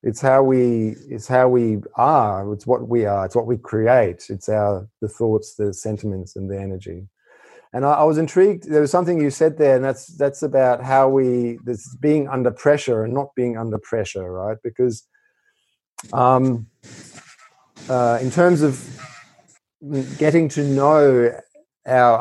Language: English